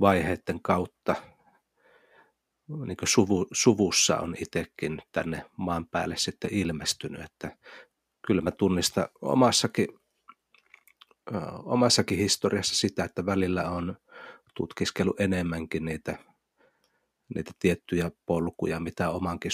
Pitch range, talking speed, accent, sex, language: 85-100 Hz, 100 wpm, native, male, Finnish